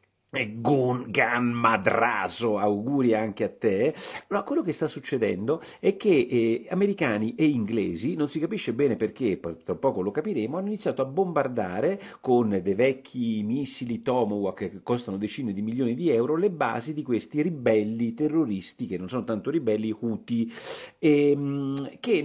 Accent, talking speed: native, 155 wpm